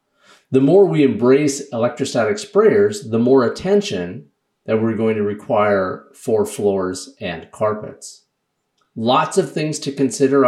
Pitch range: 110-150 Hz